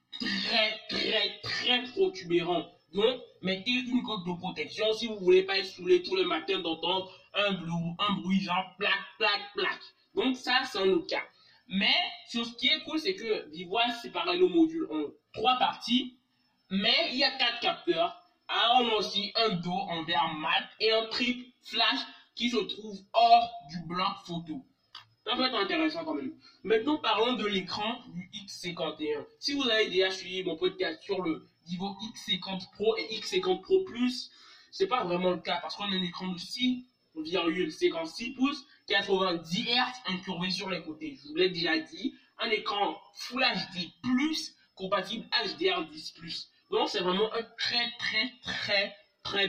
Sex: male